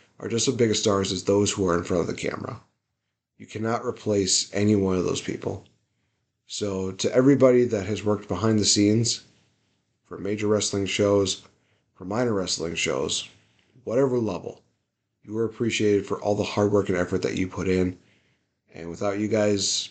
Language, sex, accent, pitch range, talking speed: English, male, American, 95-115 Hz, 180 wpm